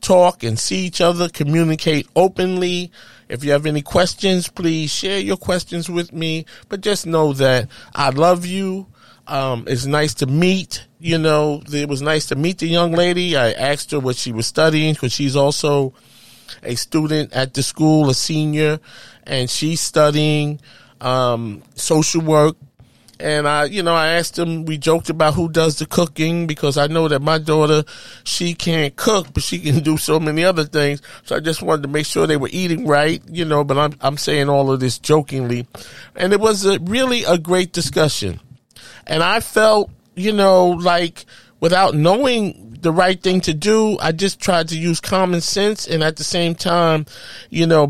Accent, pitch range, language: American, 140-175 Hz, English